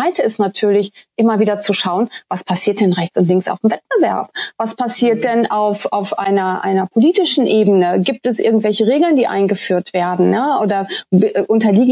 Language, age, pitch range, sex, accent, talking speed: German, 30-49, 200-235 Hz, female, German, 175 wpm